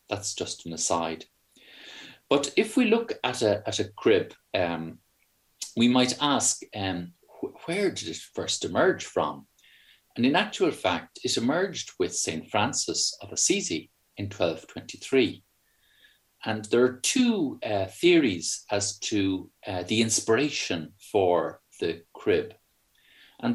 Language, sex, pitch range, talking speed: English, male, 90-140 Hz, 135 wpm